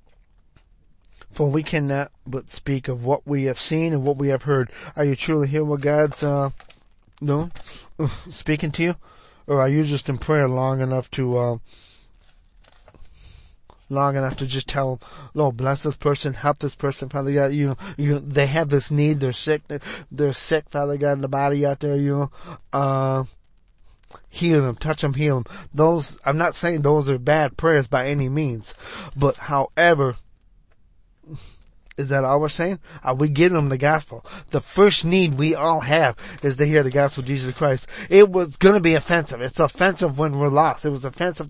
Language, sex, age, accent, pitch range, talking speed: English, male, 30-49, American, 135-155 Hz, 185 wpm